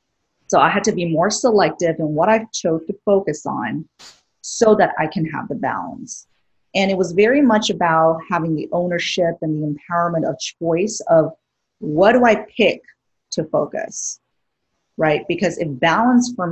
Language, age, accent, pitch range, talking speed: English, 40-59, American, 160-195 Hz, 170 wpm